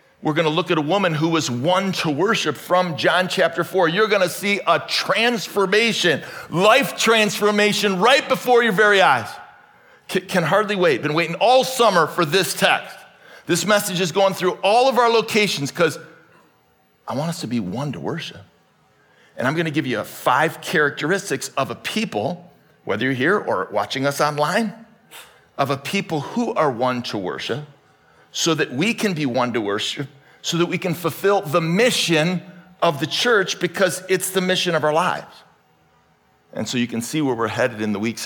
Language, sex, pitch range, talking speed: English, male, 140-200 Hz, 185 wpm